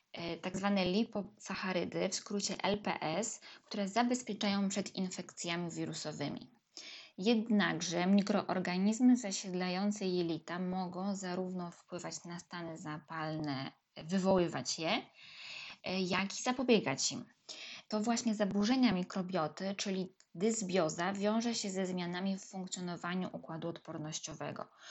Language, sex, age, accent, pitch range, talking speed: Polish, female, 20-39, native, 175-210 Hz, 100 wpm